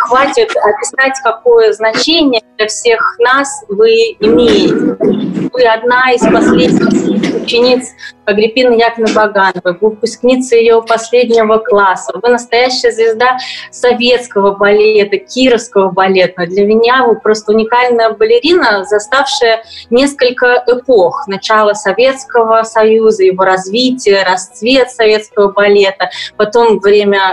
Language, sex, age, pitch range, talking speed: Russian, female, 30-49, 210-260 Hz, 105 wpm